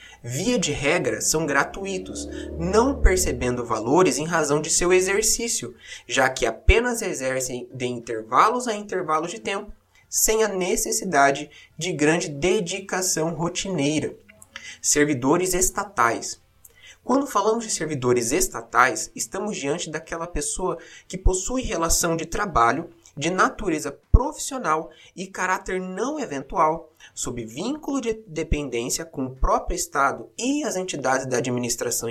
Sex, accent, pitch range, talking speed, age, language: male, Brazilian, 140-195 Hz, 125 wpm, 20-39, Portuguese